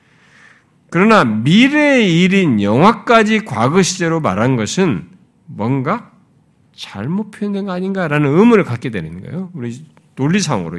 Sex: male